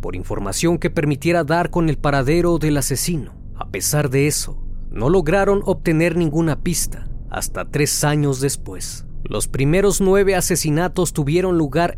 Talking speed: 145 wpm